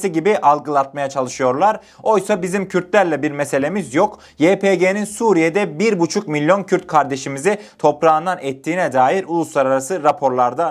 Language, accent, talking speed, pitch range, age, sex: Turkish, native, 110 wpm, 150-220 Hz, 30-49, male